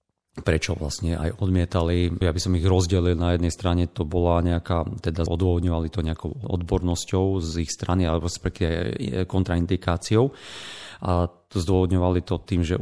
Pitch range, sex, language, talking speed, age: 85-95 Hz, male, Slovak, 150 wpm, 40-59